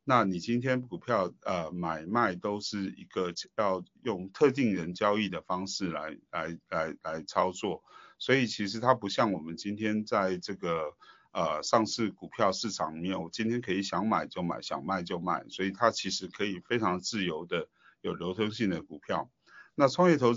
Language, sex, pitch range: Chinese, male, 90-115 Hz